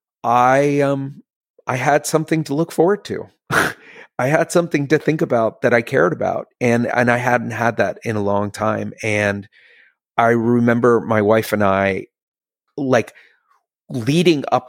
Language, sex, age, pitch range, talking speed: English, male, 30-49, 105-130 Hz, 160 wpm